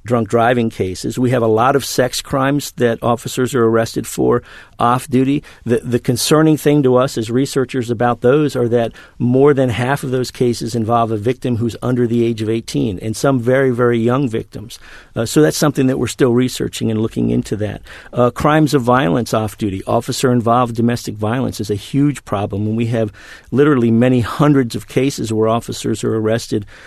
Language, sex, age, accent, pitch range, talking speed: English, male, 50-69, American, 110-130 Hz, 190 wpm